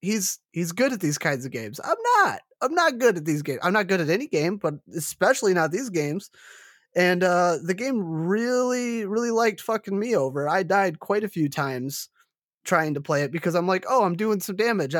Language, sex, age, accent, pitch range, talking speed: English, male, 20-39, American, 160-215 Hz, 220 wpm